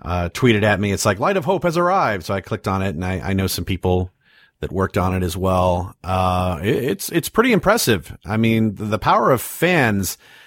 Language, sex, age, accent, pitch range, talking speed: English, male, 40-59, American, 100-125 Hz, 230 wpm